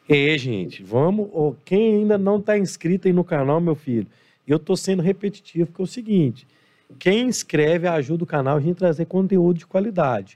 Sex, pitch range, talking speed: male, 150-200 Hz, 190 wpm